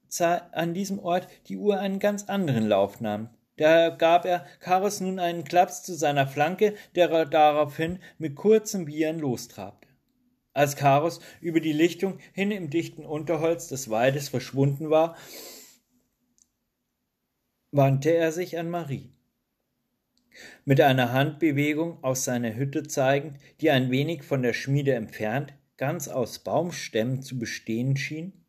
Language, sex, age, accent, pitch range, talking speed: German, male, 40-59, German, 130-175 Hz, 135 wpm